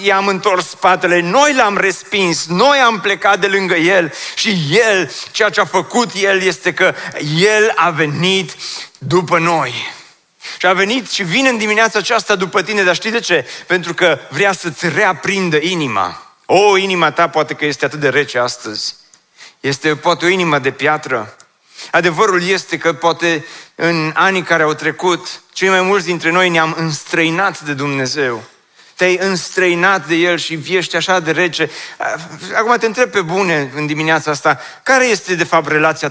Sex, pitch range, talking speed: male, 165-200 Hz, 180 wpm